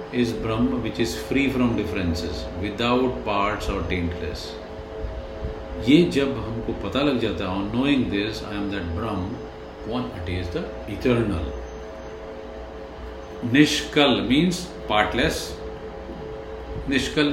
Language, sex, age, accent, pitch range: Hindi, male, 50-69, native, 95-150 Hz